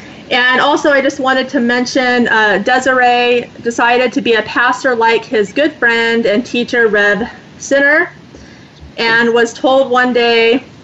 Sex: female